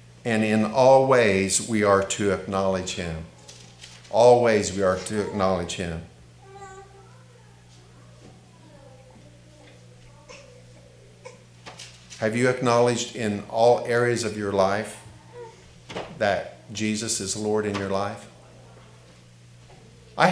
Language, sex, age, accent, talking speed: English, male, 50-69, American, 95 wpm